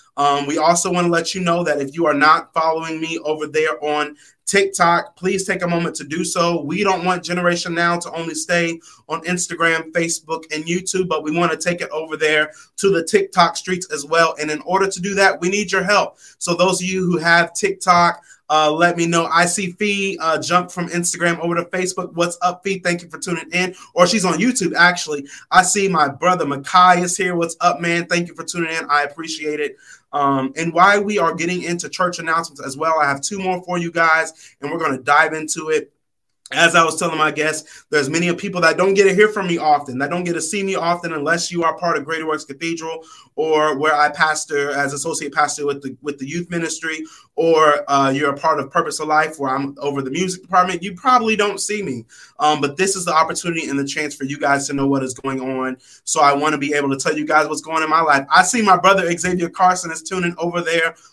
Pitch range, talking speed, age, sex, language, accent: 155-180 Hz, 245 wpm, 30-49, male, English, American